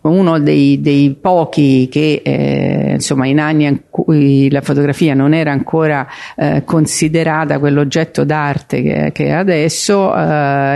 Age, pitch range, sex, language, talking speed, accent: 50-69, 140-180 Hz, female, English, 135 wpm, Italian